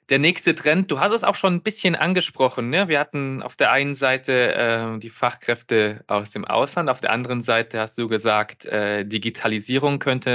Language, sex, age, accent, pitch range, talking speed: German, male, 20-39, German, 110-130 Hz, 195 wpm